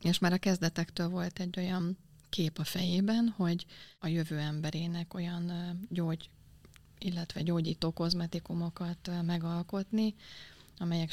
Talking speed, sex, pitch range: 115 wpm, female, 155-180 Hz